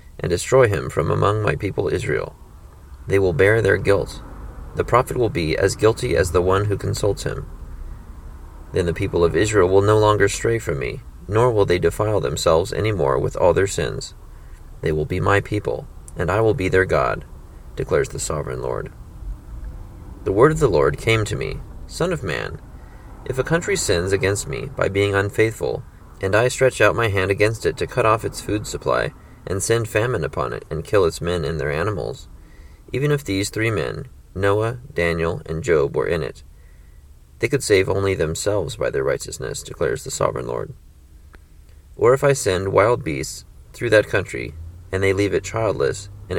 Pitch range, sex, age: 80-110 Hz, male, 30-49